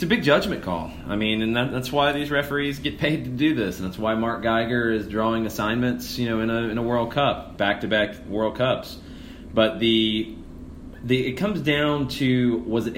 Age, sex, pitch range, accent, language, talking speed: 30-49, male, 90-115 Hz, American, English, 215 wpm